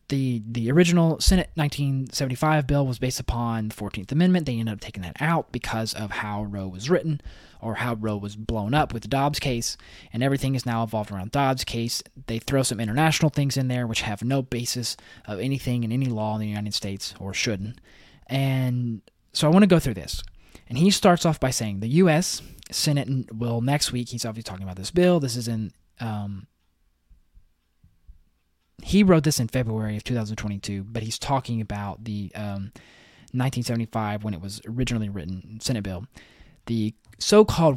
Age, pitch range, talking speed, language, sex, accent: 20-39, 105-140 Hz, 185 wpm, English, male, American